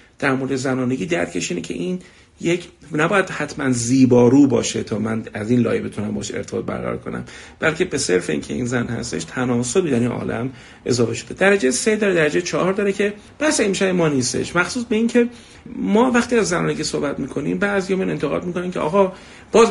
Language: Persian